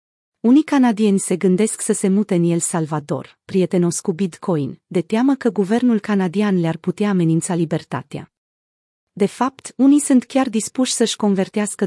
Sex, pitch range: female, 180-225 Hz